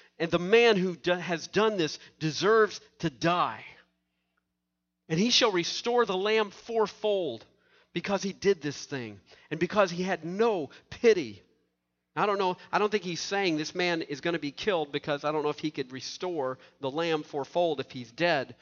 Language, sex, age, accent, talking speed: English, male, 50-69, American, 185 wpm